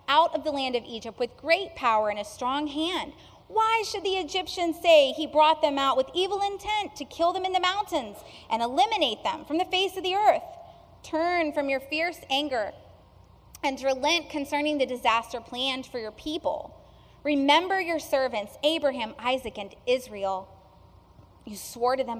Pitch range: 255-360 Hz